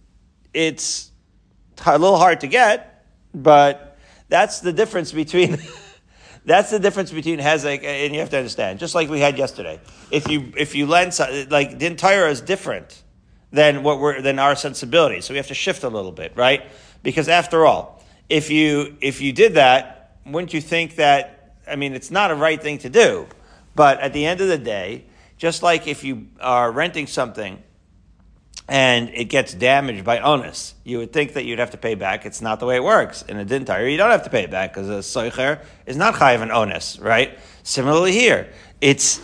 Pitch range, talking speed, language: 120-155 Hz, 200 wpm, English